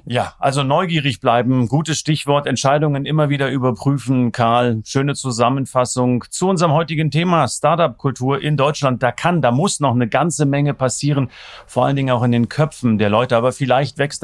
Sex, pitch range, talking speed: male, 120-155 Hz, 175 wpm